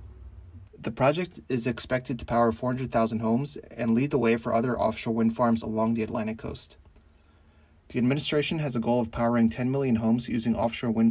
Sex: male